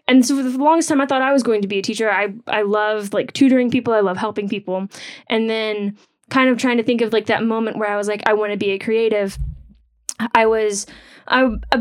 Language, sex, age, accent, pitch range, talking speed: English, female, 10-29, American, 205-235 Hz, 250 wpm